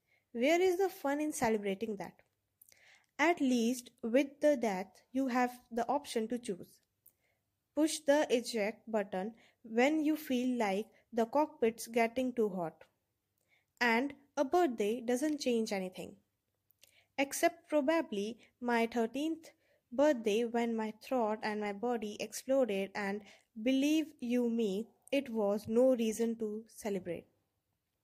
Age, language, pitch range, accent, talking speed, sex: 20-39, English, 215-270 Hz, Indian, 125 wpm, female